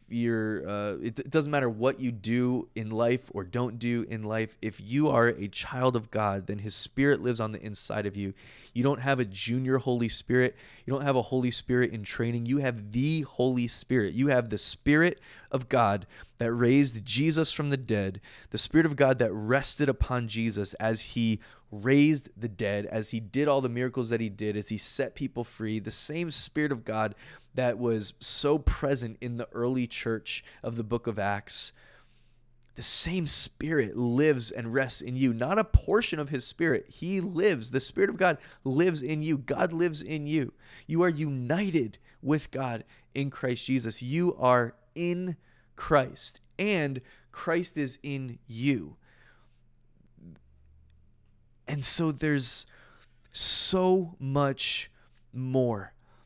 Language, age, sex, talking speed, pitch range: English, 20-39, male, 170 wpm, 110-140 Hz